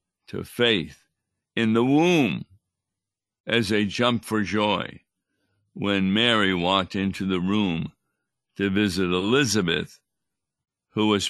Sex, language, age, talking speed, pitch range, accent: male, English, 60-79, 110 wpm, 95-115 Hz, American